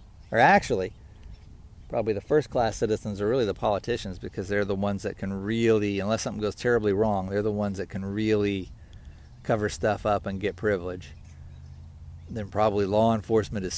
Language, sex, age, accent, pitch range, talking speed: English, male, 50-69, American, 85-105 Hz, 170 wpm